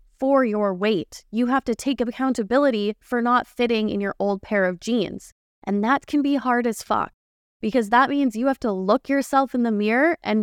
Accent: American